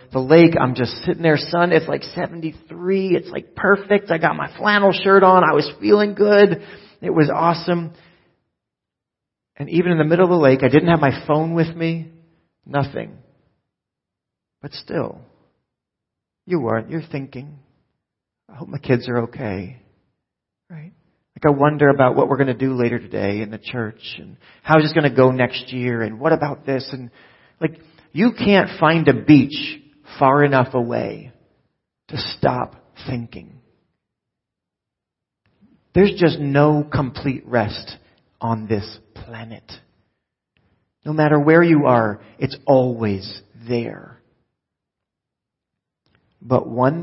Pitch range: 120-165 Hz